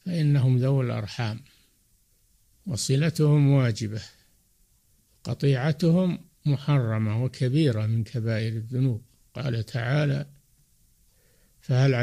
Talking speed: 70 wpm